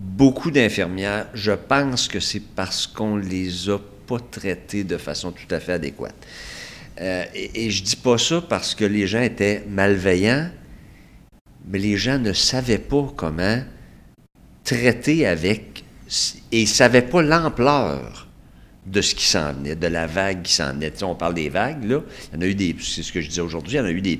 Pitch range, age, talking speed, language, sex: 90-125 Hz, 50-69, 205 wpm, French, male